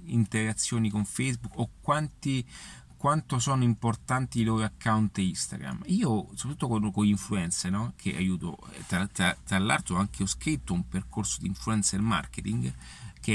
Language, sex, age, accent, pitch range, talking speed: Italian, male, 30-49, native, 100-135 Hz, 150 wpm